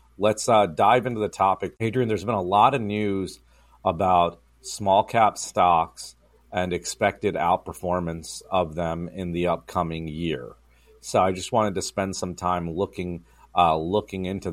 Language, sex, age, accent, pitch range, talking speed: English, male, 40-59, American, 85-100 Hz, 155 wpm